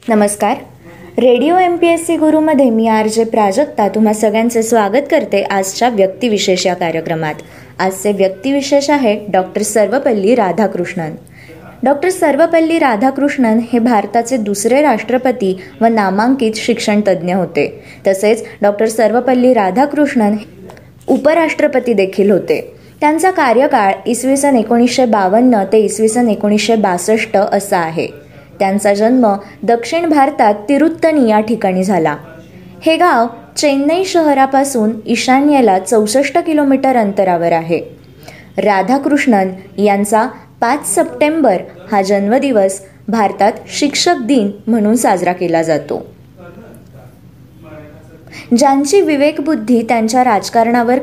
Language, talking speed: Marathi, 100 wpm